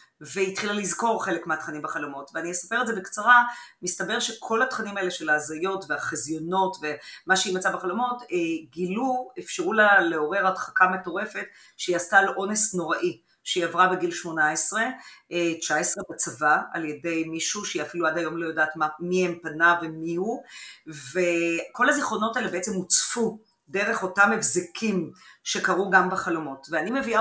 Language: Hebrew